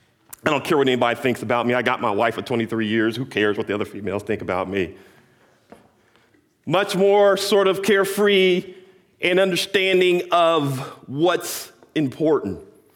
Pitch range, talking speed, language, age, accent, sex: 115-185 Hz, 155 wpm, English, 40-59, American, male